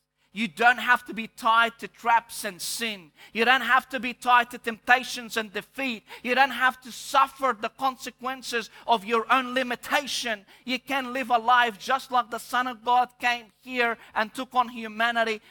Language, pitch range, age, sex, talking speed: English, 190-250 Hz, 40-59, male, 185 wpm